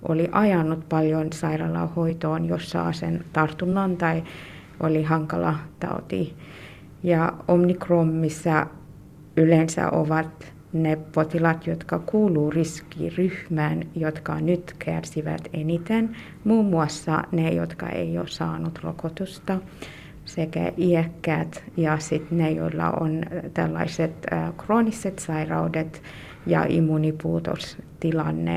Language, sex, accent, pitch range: Finnish, female, native, 155-175 Hz